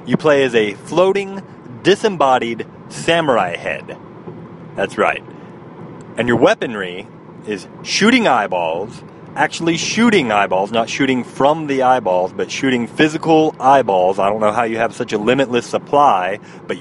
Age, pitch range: 30-49, 110-165 Hz